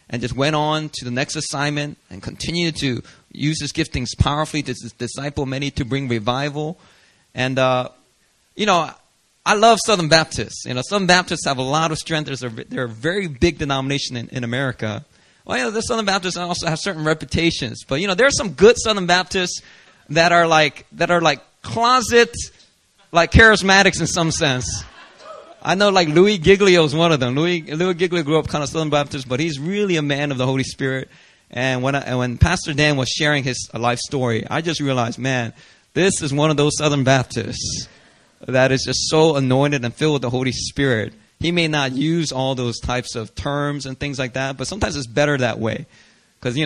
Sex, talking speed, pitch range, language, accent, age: male, 205 wpm, 130-165 Hz, English, American, 30-49